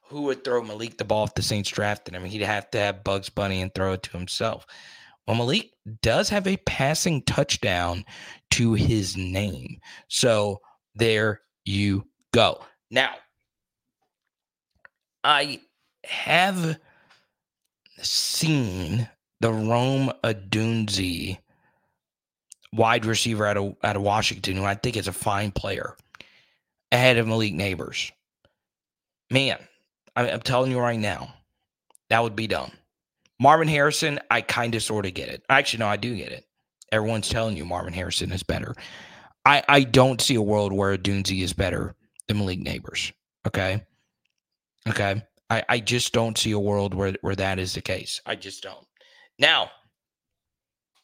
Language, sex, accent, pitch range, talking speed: English, male, American, 100-125 Hz, 150 wpm